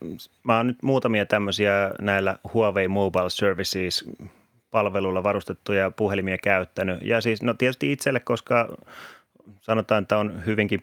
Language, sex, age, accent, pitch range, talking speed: Finnish, male, 30-49, native, 95-110 Hz, 125 wpm